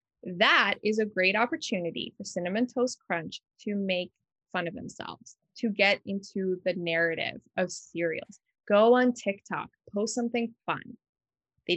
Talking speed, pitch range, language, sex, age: 145 wpm, 175-220 Hz, English, female, 20-39